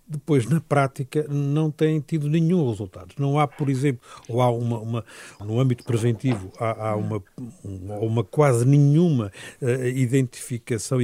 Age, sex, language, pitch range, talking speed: 50-69, male, Portuguese, 110-145 Hz, 150 wpm